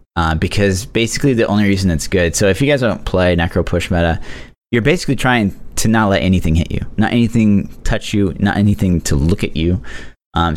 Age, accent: 30-49, American